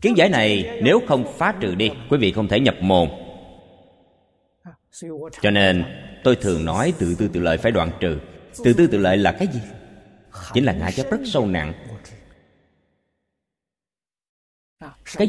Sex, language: male, Vietnamese